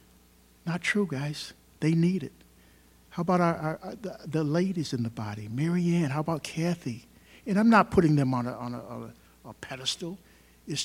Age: 60-79